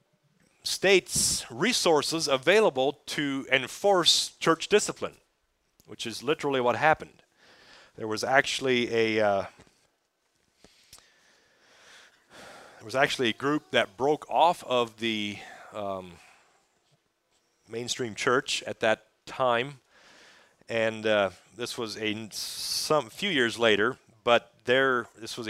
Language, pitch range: English, 105-135 Hz